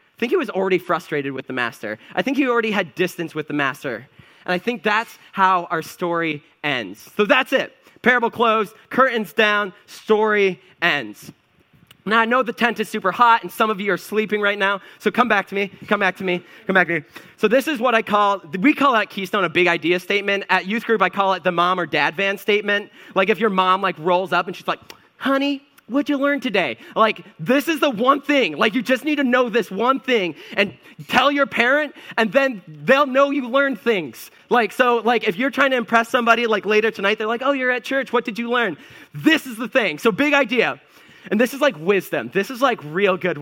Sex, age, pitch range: male, 30-49, 185-250 Hz